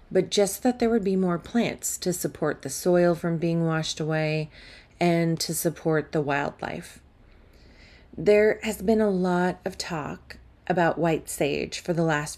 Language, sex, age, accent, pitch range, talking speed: English, female, 30-49, American, 145-185 Hz, 165 wpm